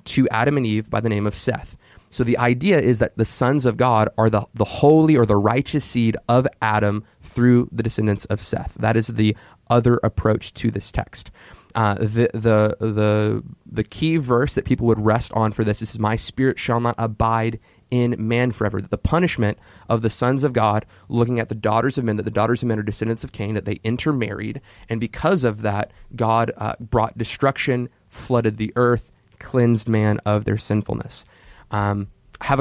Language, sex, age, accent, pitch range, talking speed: English, male, 20-39, American, 105-120 Hz, 195 wpm